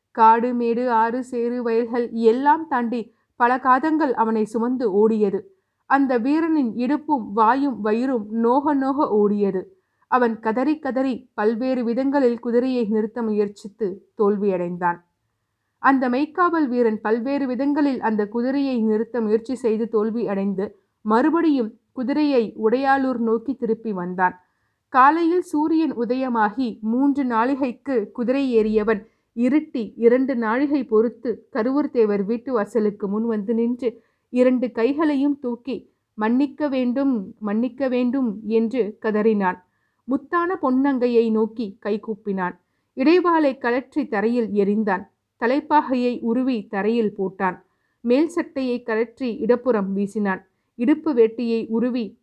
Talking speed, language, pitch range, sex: 105 wpm, Tamil, 220-265 Hz, female